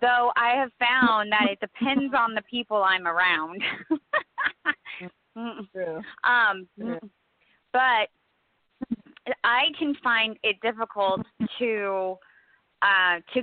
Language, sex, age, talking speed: English, female, 30-49, 100 wpm